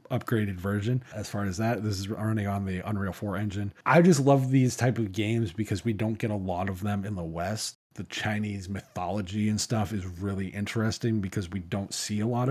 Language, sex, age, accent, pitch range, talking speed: English, male, 20-39, American, 100-125 Hz, 220 wpm